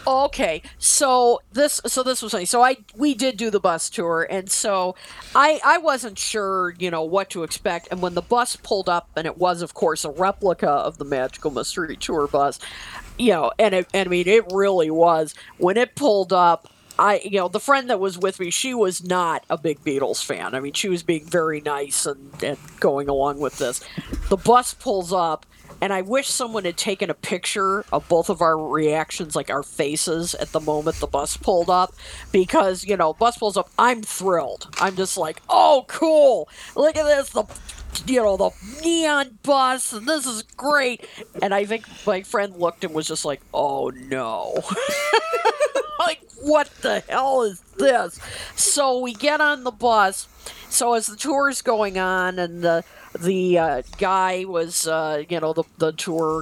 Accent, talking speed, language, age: American, 195 wpm, English, 50-69